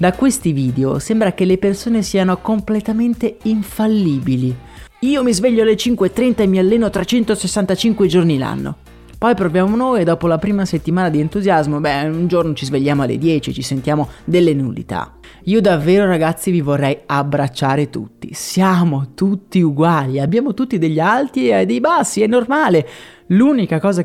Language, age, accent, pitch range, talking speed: Italian, 30-49, native, 150-220 Hz, 155 wpm